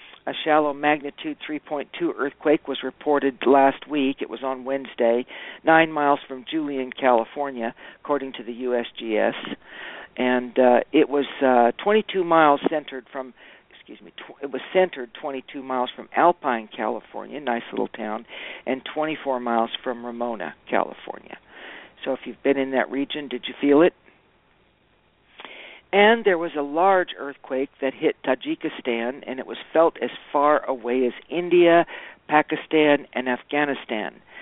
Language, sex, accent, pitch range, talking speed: English, male, American, 125-150 Hz, 145 wpm